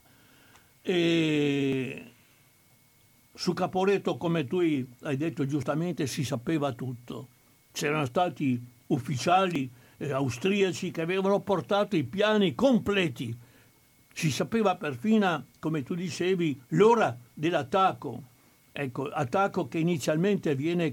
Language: Italian